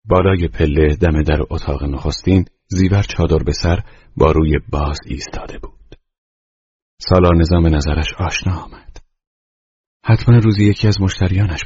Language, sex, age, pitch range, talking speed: Persian, male, 40-59, 75-90 Hz, 130 wpm